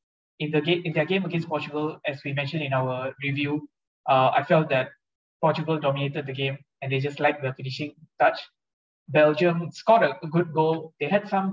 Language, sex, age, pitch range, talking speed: English, male, 20-39, 135-155 Hz, 195 wpm